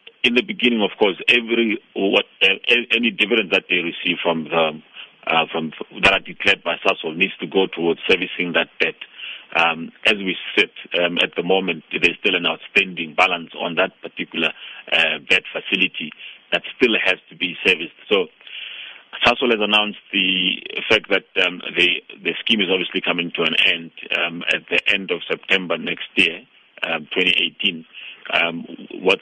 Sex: male